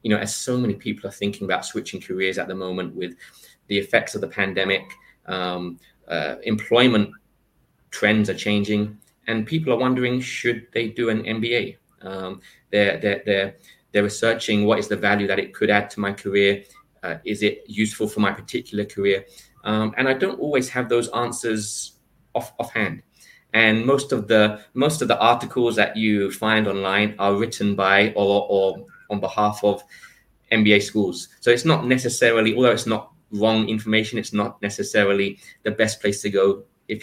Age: 20-39